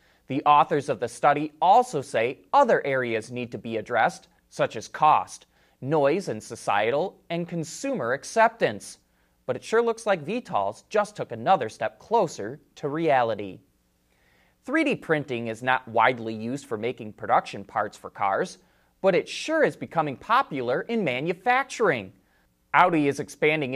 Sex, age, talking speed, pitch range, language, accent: male, 30-49, 145 wpm, 125-200 Hz, English, American